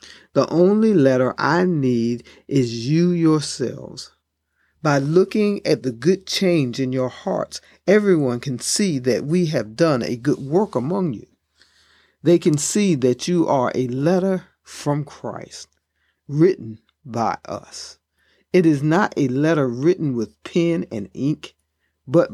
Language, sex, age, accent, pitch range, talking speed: English, male, 50-69, American, 130-175 Hz, 140 wpm